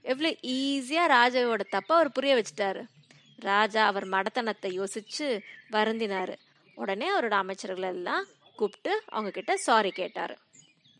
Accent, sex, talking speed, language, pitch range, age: native, female, 115 wpm, Tamil, 195-280 Hz, 20-39